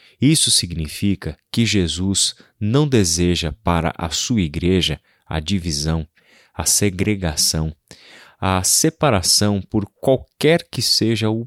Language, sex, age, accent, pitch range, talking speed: Portuguese, male, 30-49, Brazilian, 85-110 Hz, 110 wpm